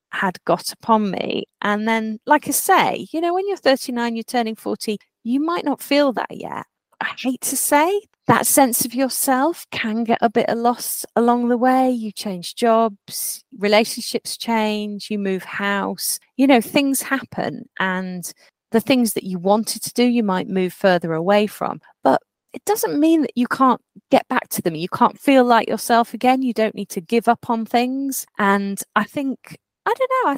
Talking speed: 195 wpm